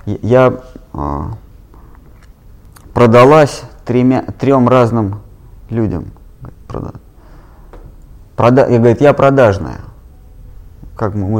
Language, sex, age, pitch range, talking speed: Russian, male, 20-39, 105-135 Hz, 80 wpm